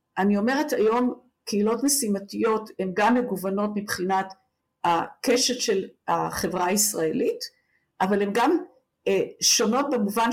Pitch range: 200-250 Hz